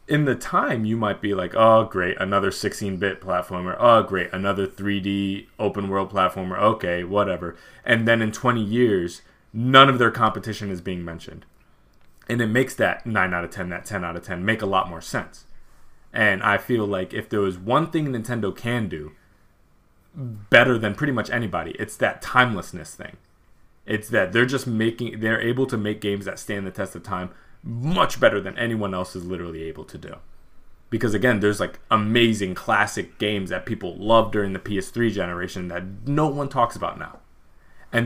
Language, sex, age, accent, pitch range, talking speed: English, male, 20-39, American, 95-115 Hz, 190 wpm